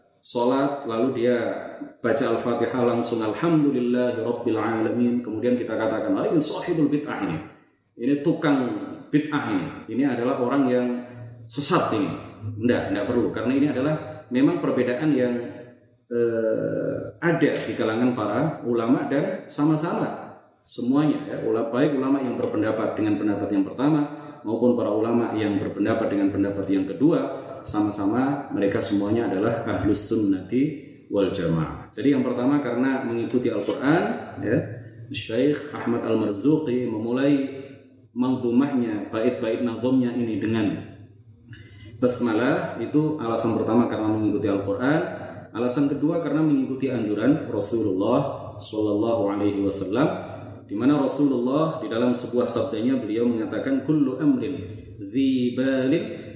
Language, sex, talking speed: Indonesian, male, 115 wpm